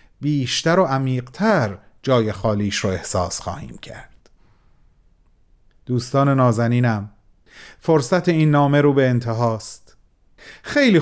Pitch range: 120-170 Hz